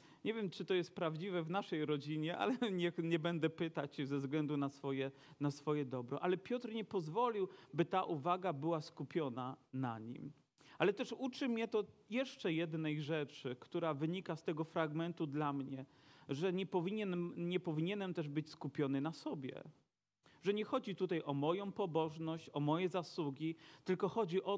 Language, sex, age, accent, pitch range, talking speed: Polish, male, 40-59, native, 160-200 Hz, 170 wpm